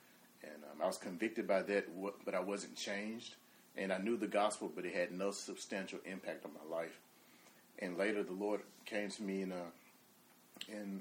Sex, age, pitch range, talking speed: male, 30-49, 90-100 Hz, 190 wpm